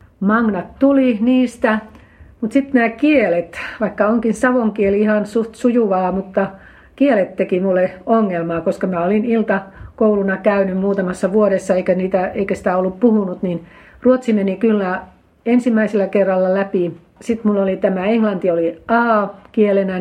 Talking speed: 135 wpm